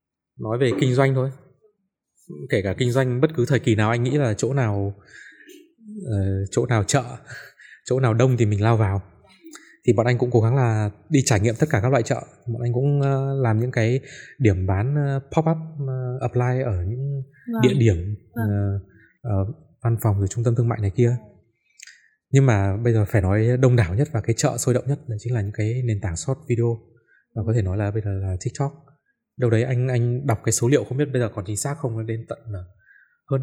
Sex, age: male, 20-39